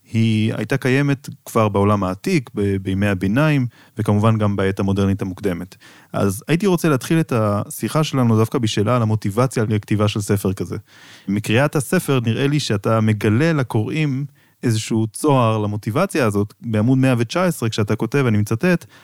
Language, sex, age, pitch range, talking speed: Hebrew, male, 30-49, 105-140 Hz, 150 wpm